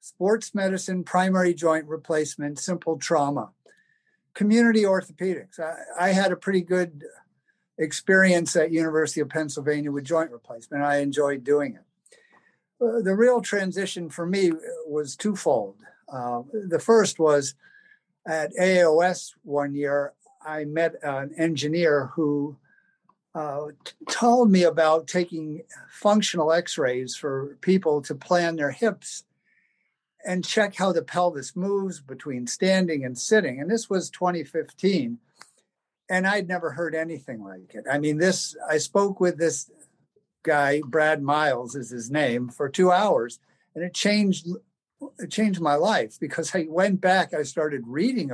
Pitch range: 150-190 Hz